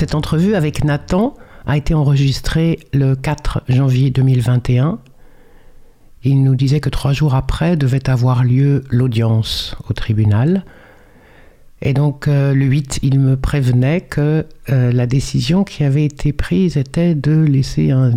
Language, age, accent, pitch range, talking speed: French, 60-79, French, 125-150 Hz, 145 wpm